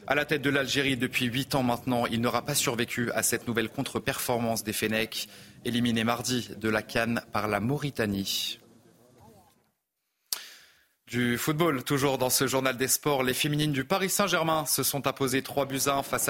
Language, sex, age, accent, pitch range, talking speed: French, male, 30-49, French, 120-150 Hz, 175 wpm